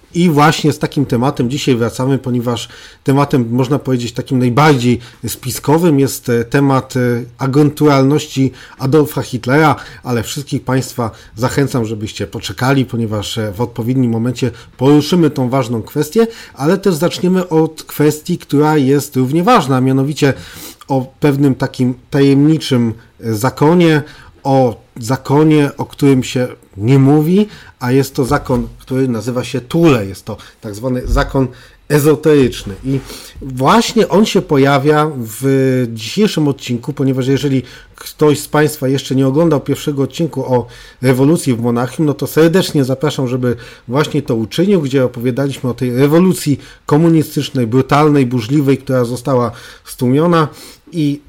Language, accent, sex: Polish, native, male